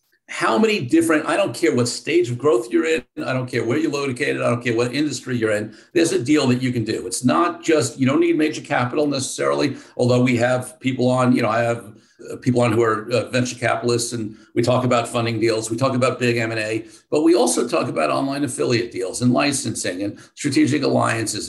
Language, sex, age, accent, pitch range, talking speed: English, male, 50-69, American, 120-140 Hz, 225 wpm